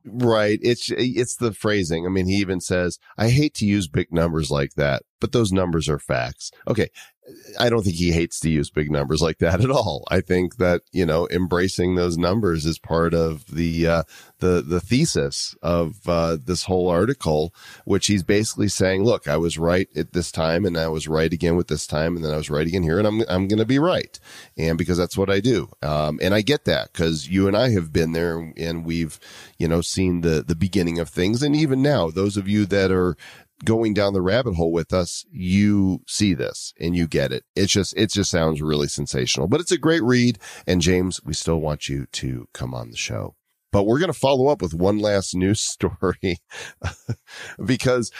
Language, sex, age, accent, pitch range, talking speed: English, male, 40-59, American, 85-105 Hz, 220 wpm